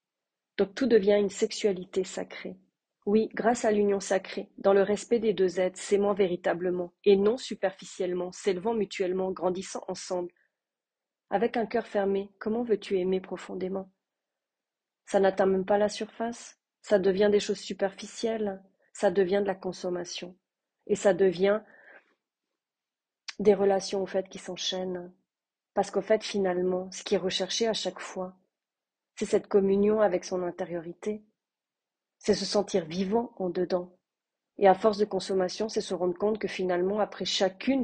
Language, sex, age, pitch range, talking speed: French, female, 30-49, 185-210 Hz, 150 wpm